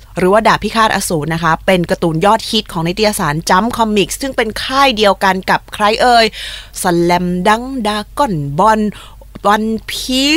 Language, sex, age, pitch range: Thai, female, 20-39, 175-225 Hz